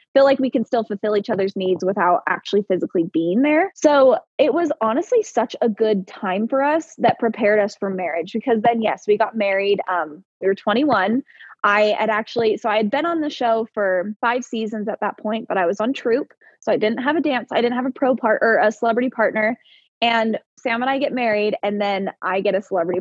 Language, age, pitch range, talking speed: English, 20-39, 205-260 Hz, 230 wpm